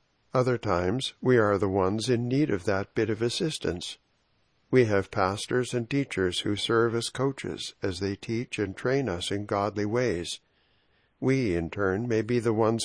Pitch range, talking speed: 95-120 Hz, 175 wpm